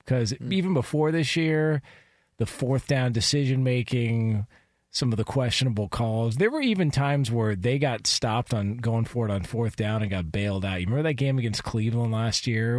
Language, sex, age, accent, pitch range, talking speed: English, male, 40-59, American, 100-125 Hz, 195 wpm